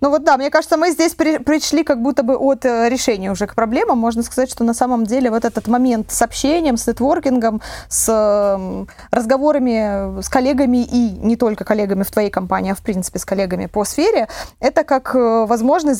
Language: Russian